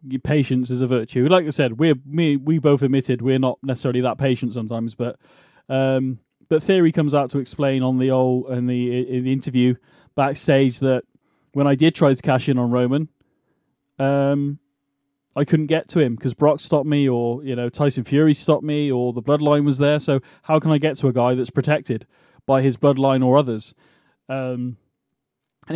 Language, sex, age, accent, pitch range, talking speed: English, male, 20-39, British, 125-145 Hz, 200 wpm